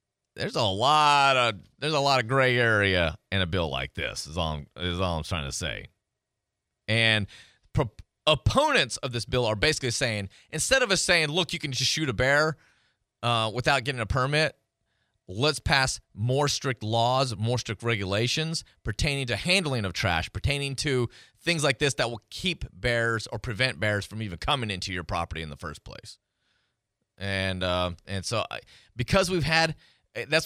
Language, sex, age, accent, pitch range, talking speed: English, male, 30-49, American, 105-150 Hz, 180 wpm